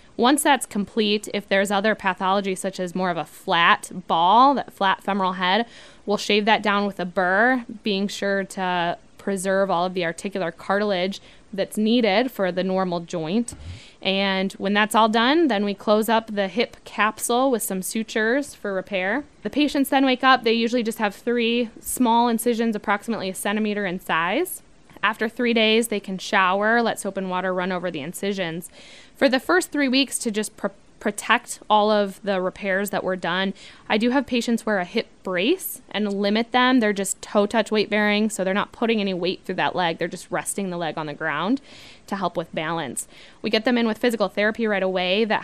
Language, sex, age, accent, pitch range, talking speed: English, female, 10-29, American, 185-230 Hz, 195 wpm